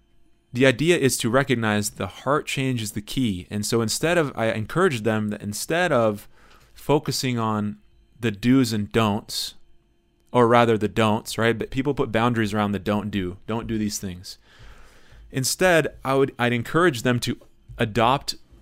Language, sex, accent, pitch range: English, male, American, 105-125 Hz